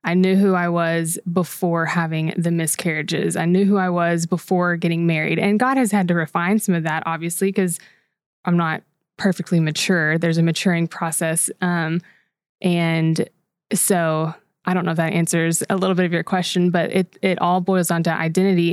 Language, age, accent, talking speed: English, 20-39, American, 185 wpm